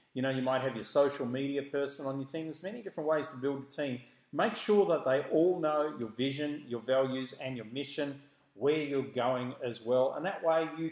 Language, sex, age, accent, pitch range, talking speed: English, male, 40-59, Australian, 130-155 Hz, 230 wpm